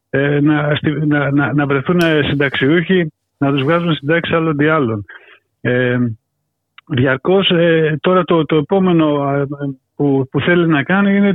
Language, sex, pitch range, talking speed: Greek, male, 135-175 Hz, 135 wpm